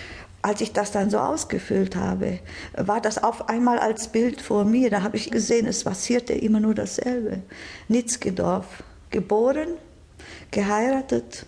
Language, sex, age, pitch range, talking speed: German, female, 50-69, 190-220 Hz, 140 wpm